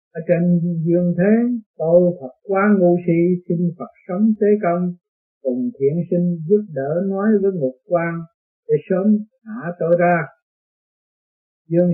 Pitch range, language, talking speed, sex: 155-200 Hz, Vietnamese, 145 wpm, male